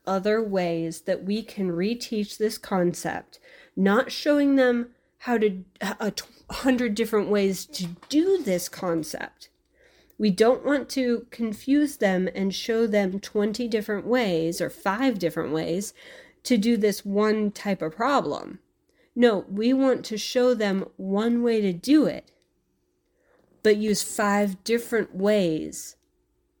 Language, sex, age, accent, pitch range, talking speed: English, female, 40-59, American, 185-225 Hz, 135 wpm